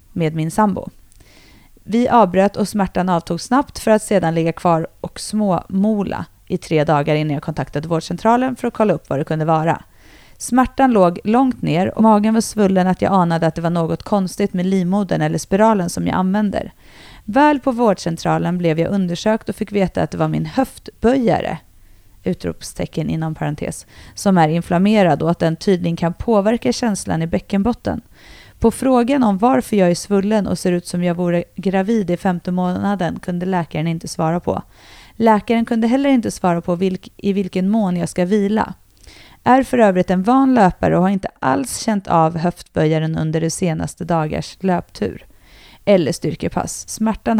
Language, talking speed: Swedish, 175 wpm